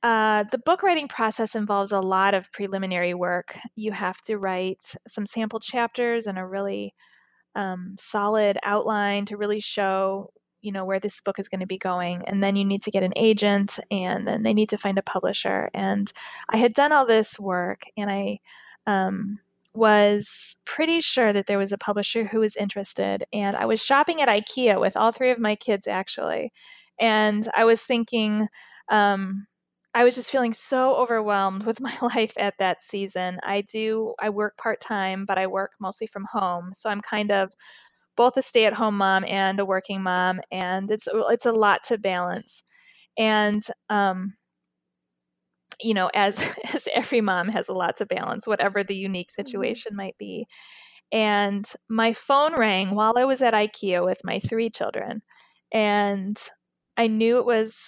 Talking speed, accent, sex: 175 wpm, American, female